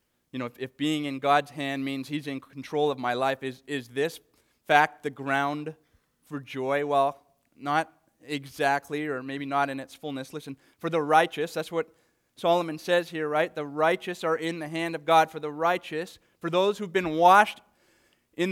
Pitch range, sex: 140-190 Hz, male